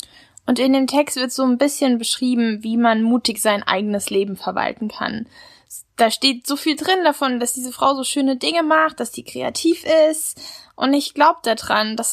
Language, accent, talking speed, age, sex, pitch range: German, German, 195 wpm, 10-29, female, 210-250 Hz